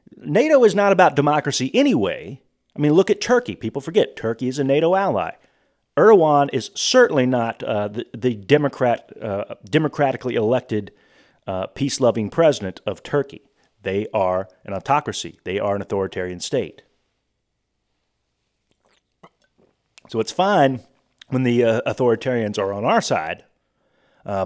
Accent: American